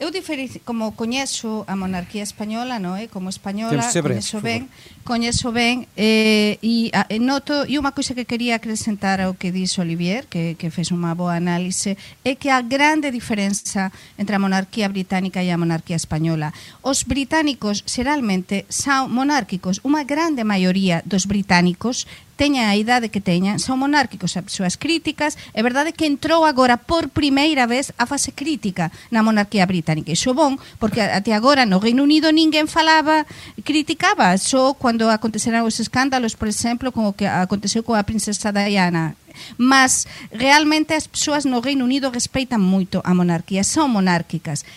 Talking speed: 160 wpm